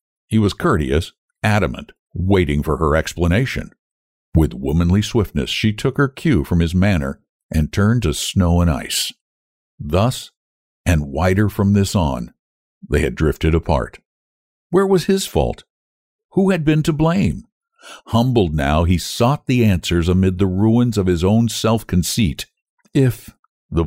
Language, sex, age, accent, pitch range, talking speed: English, male, 60-79, American, 85-135 Hz, 145 wpm